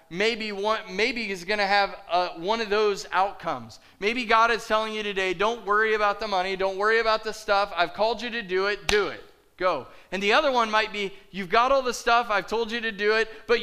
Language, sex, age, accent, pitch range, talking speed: English, male, 20-39, American, 165-220 Hz, 240 wpm